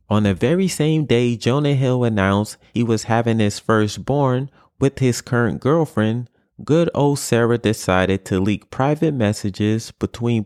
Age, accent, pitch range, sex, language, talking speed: 30-49, American, 110-150 Hz, male, English, 150 wpm